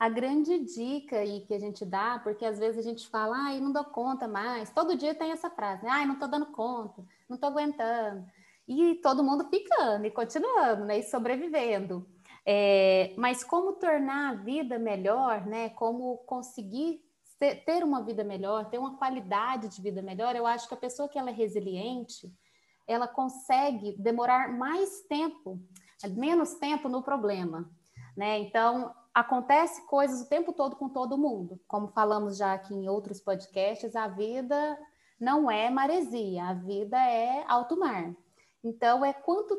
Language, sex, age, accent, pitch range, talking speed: Portuguese, female, 20-39, Brazilian, 210-285 Hz, 165 wpm